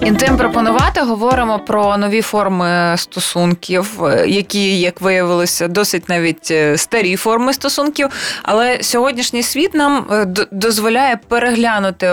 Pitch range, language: 180-235 Hz, Ukrainian